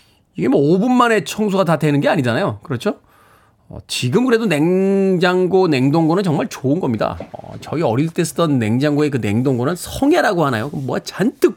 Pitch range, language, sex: 130-175 Hz, Korean, male